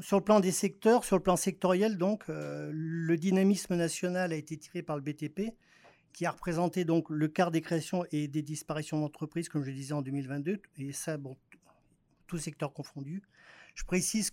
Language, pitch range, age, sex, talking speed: French, 155-190 Hz, 40-59, male, 195 wpm